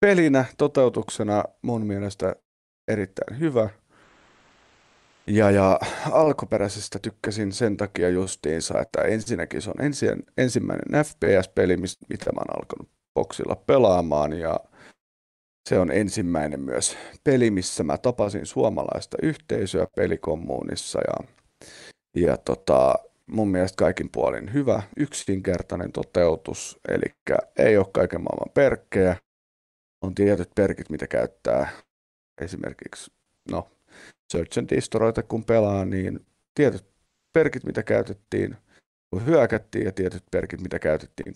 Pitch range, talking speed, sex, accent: 90-115 Hz, 115 wpm, male, native